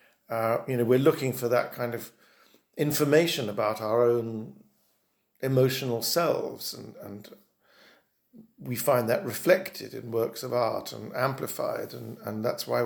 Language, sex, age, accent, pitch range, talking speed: English, male, 50-69, British, 115-150 Hz, 145 wpm